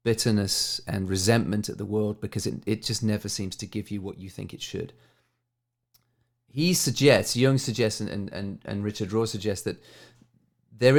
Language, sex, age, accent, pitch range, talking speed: English, male, 30-49, British, 105-125 Hz, 175 wpm